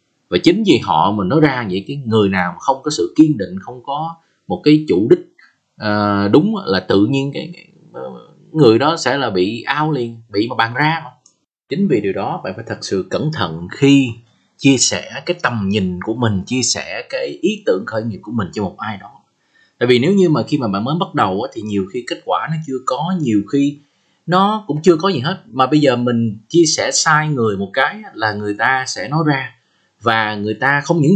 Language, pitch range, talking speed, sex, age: Vietnamese, 120-175 Hz, 225 wpm, male, 20-39